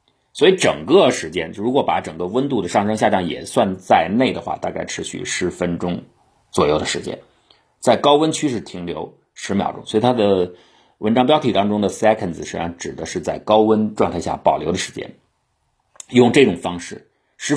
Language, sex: Chinese, male